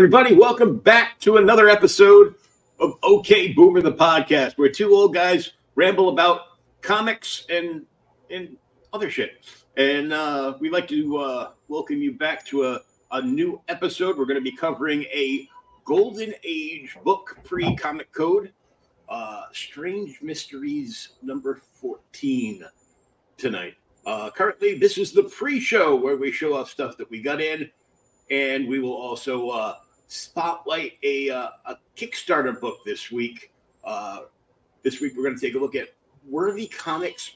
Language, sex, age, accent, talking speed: English, male, 50-69, American, 150 wpm